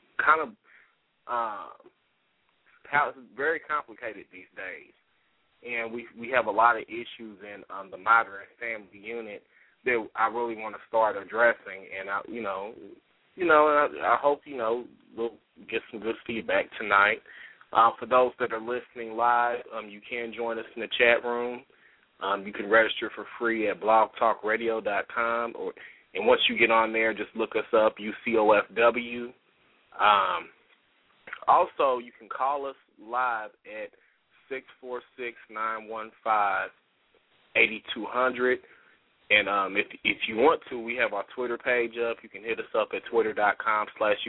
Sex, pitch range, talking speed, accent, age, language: male, 110-125 Hz, 160 wpm, American, 20-39, English